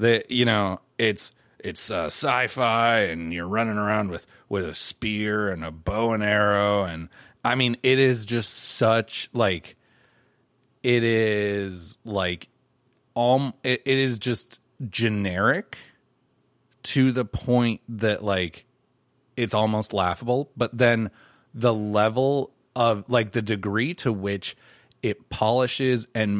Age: 30-49